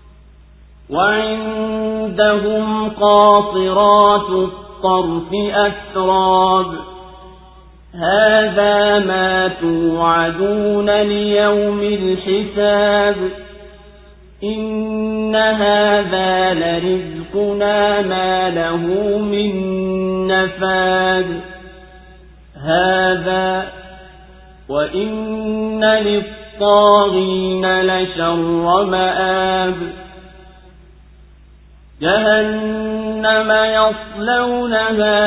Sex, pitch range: male, 185-205 Hz